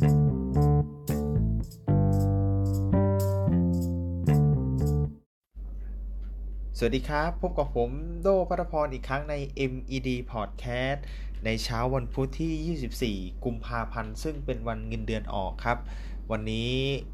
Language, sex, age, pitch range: Thai, male, 20-39, 110-140 Hz